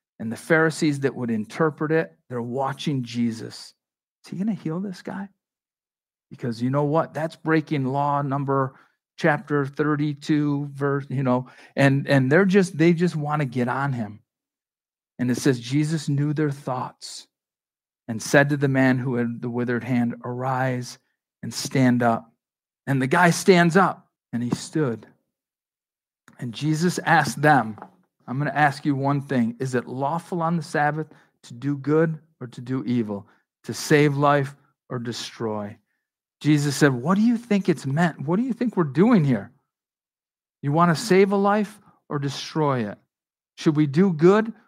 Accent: American